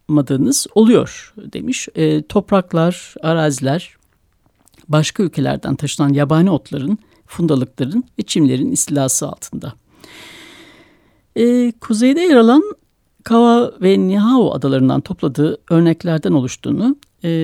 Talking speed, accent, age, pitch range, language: 90 wpm, native, 60-79, 155-210 Hz, Turkish